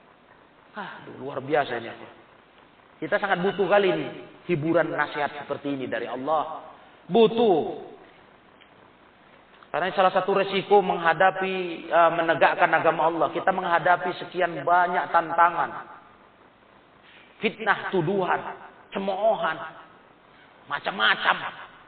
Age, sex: 40-59, male